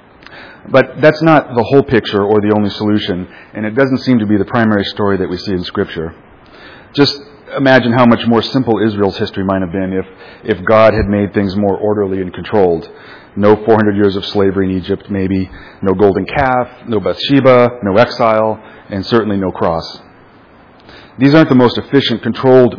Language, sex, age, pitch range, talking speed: English, male, 40-59, 100-125 Hz, 185 wpm